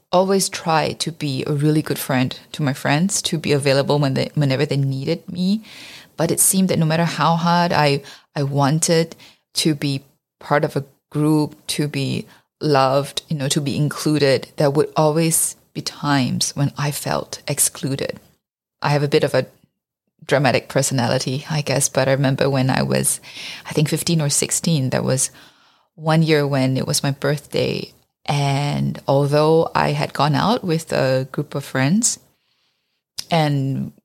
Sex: female